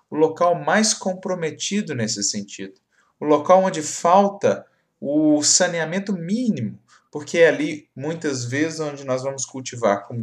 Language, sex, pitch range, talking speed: Portuguese, male, 115-155 Hz, 135 wpm